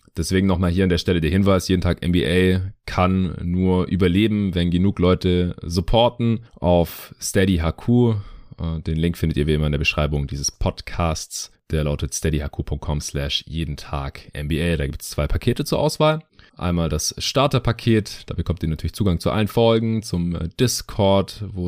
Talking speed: 165 wpm